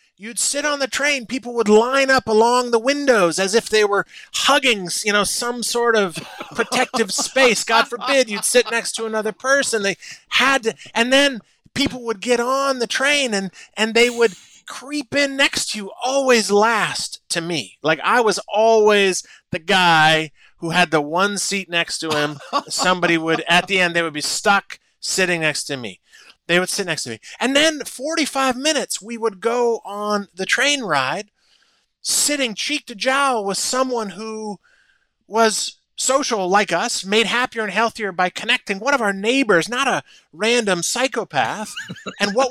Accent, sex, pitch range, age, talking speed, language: American, male, 195-270 Hz, 30-49, 180 wpm, English